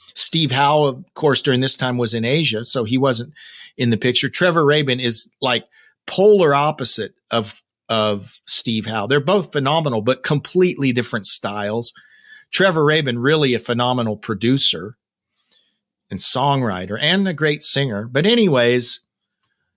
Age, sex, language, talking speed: 40-59, male, English, 145 wpm